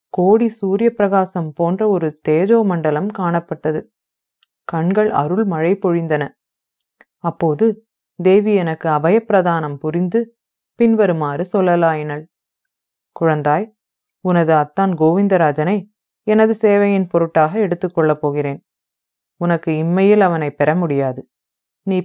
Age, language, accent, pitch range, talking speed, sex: 30-49, English, Indian, 155-200 Hz, 95 wpm, female